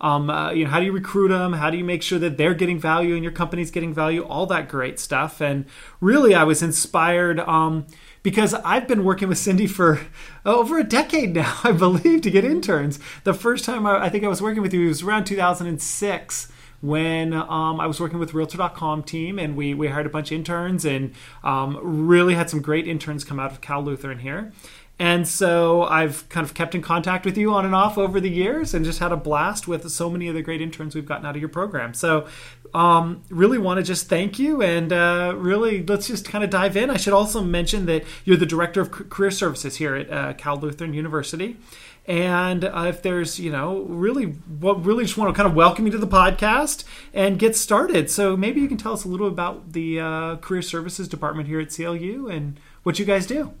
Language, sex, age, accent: English, male, 30-49, American